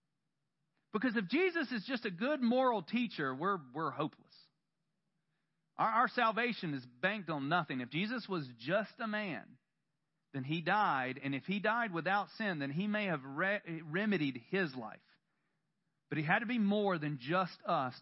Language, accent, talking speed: English, American, 165 wpm